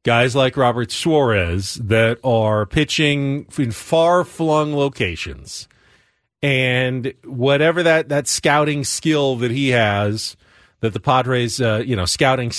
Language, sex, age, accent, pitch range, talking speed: English, male, 40-59, American, 115-150 Hz, 125 wpm